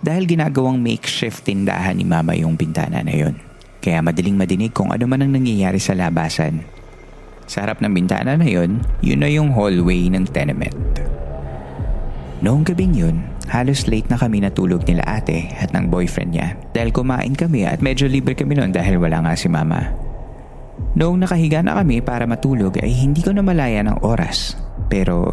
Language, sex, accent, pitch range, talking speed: Filipino, male, native, 90-130 Hz, 175 wpm